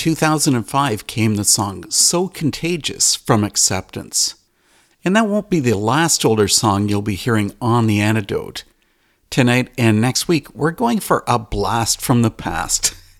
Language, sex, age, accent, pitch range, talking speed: English, male, 50-69, American, 105-150 Hz, 155 wpm